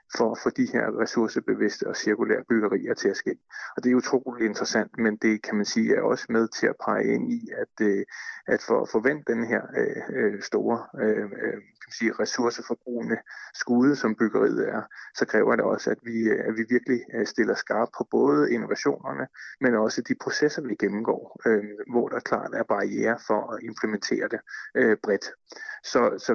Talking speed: 180 wpm